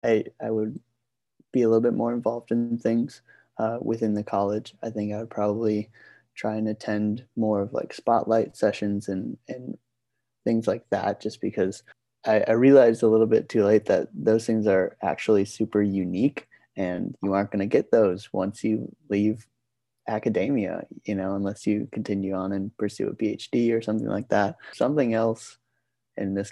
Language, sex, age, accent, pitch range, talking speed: English, male, 20-39, American, 100-115 Hz, 180 wpm